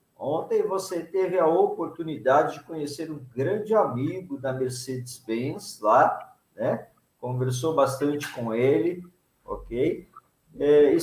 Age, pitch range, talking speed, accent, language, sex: 50-69, 135-225 Hz, 115 wpm, Brazilian, Portuguese, male